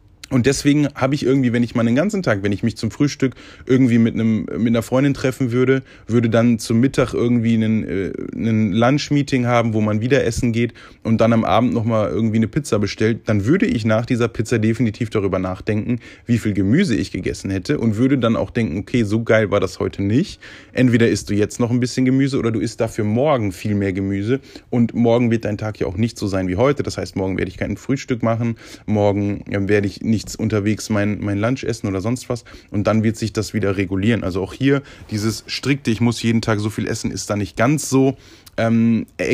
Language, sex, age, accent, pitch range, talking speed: German, male, 20-39, German, 100-120 Hz, 225 wpm